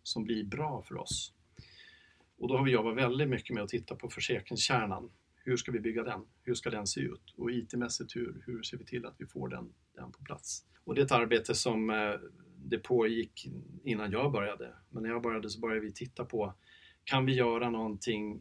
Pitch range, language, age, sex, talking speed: 110-130 Hz, Swedish, 40-59, male, 210 wpm